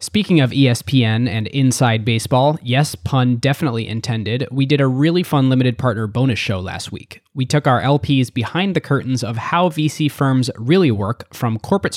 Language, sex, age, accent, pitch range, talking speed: English, male, 20-39, American, 110-135 Hz, 180 wpm